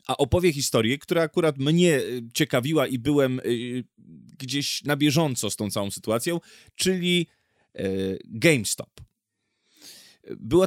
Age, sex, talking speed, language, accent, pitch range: 30-49, male, 105 wpm, Polish, native, 115-145 Hz